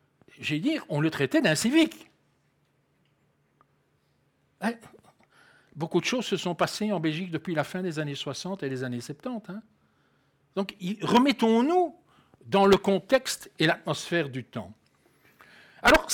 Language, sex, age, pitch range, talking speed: French, male, 60-79, 140-205 Hz, 135 wpm